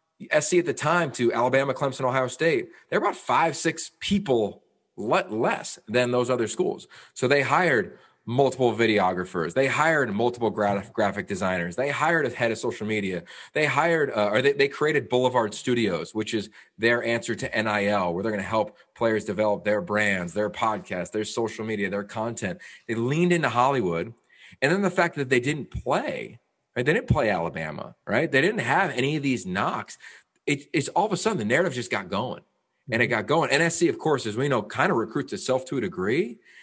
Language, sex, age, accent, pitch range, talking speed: English, male, 30-49, American, 110-150 Hz, 200 wpm